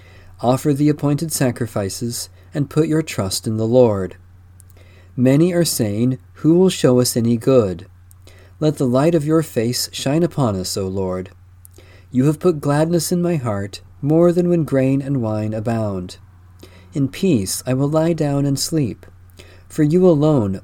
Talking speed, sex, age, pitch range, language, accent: 165 wpm, male, 40-59, 95-145 Hz, English, American